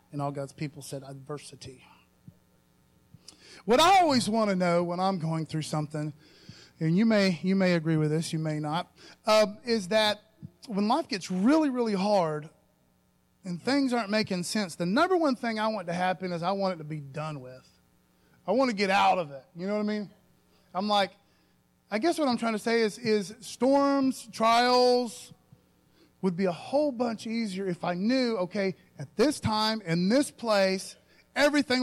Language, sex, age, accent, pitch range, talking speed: English, male, 30-49, American, 165-240 Hz, 190 wpm